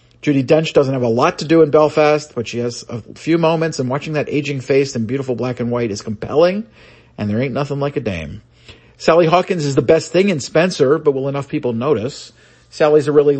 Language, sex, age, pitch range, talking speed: English, male, 40-59, 120-150 Hz, 230 wpm